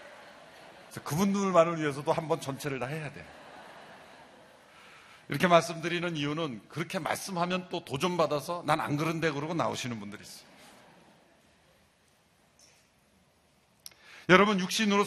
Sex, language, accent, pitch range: male, Korean, native, 130-195 Hz